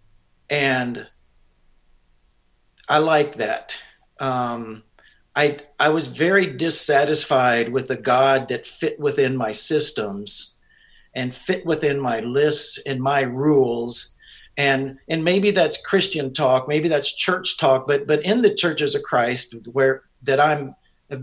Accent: American